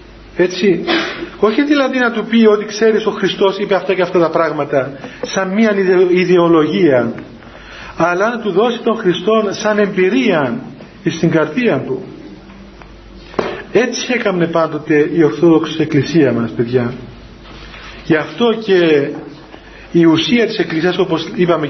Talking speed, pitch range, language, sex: 125 wpm, 160-215 Hz, Greek, male